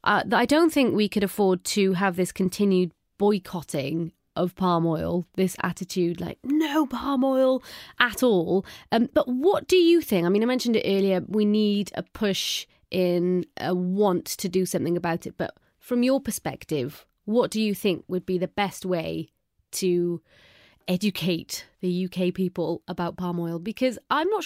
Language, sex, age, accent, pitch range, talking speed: English, female, 30-49, British, 180-245 Hz, 175 wpm